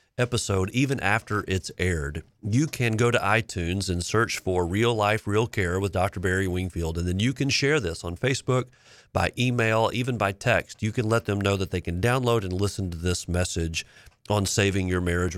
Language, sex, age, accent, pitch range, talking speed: English, male, 40-59, American, 90-120 Hz, 205 wpm